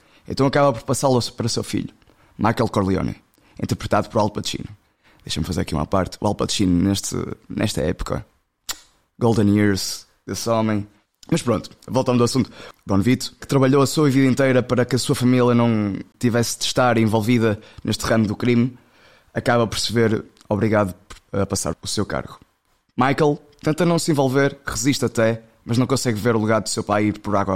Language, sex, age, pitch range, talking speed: Portuguese, male, 20-39, 105-135 Hz, 185 wpm